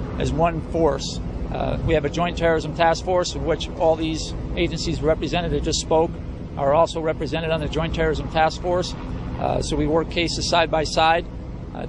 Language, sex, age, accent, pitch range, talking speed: English, male, 50-69, American, 155-175 Hz, 180 wpm